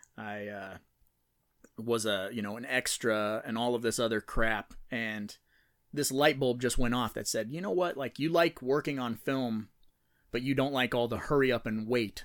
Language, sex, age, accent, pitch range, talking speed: English, male, 30-49, American, 110-125 Hz, 205 wpm